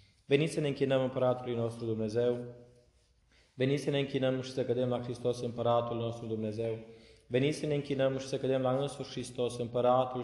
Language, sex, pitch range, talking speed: Romanian, male, 115-135 Hz, 175 wpm